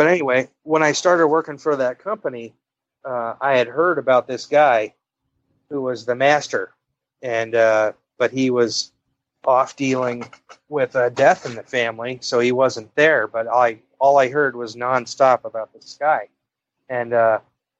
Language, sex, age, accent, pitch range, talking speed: English, male, 30-49, American, 115-135 Hz, 160 wpm